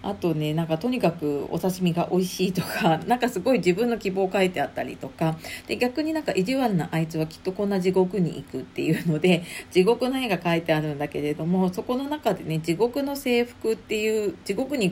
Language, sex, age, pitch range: Japanese, female, 40-59, 170-235 Hz